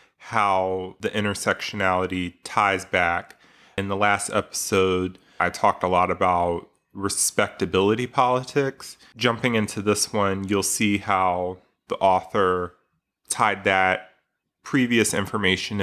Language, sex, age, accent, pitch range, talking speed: English, male, 30-49, American, 90-105 Hz, 110 wpm